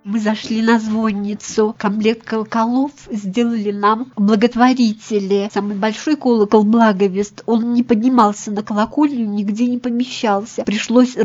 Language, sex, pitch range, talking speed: Russian, female, 210-235 Hz, 115 wpm